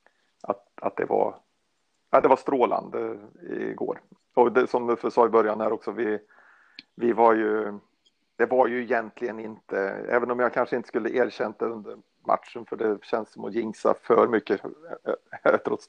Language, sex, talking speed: Swedish, male, 170 wpm